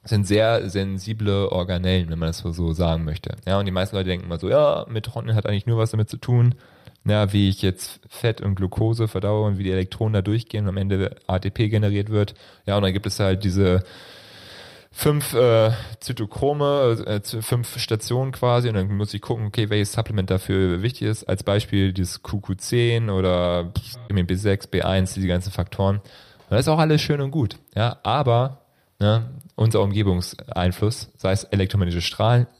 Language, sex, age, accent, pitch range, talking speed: German, male, 30-49, German, 95-115 Hz, 185 wpm